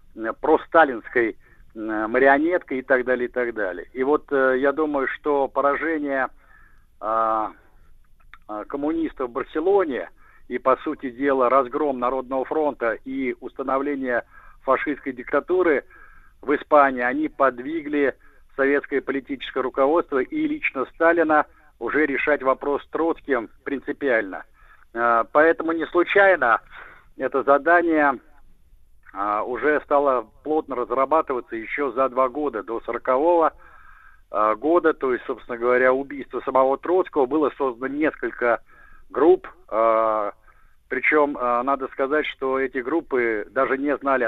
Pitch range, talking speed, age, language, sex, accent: 120-150 Hz, 110 wpm, 50-69, Russian, male, native